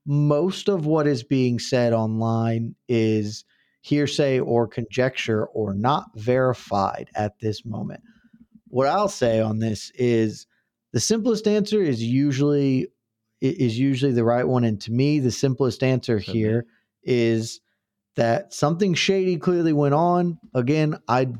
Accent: American